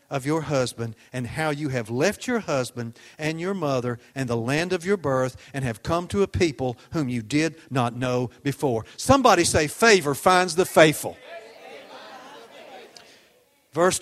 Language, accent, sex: English, American, male